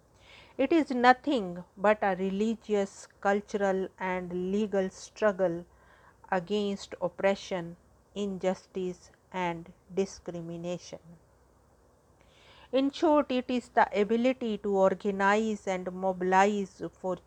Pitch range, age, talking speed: 180-210 Hz, 50-69, 90 wpm